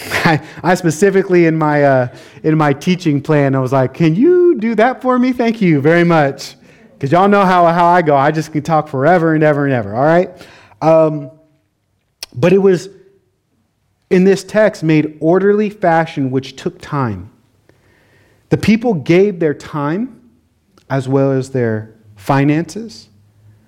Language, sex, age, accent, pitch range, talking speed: English, male, 30-49, American, 125-175 Hz, 160 wpm